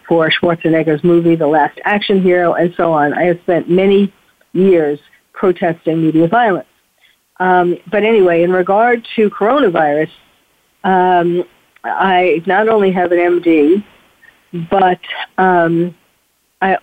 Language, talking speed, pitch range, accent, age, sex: English, 125 wpm, 165-190 Hz, American, 50-69, female